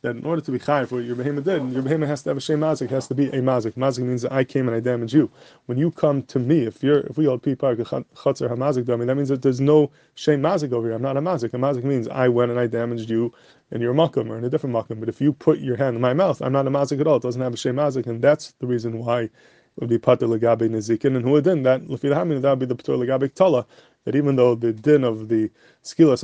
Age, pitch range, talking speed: 20-39, 120-145 Hz, 285 wpm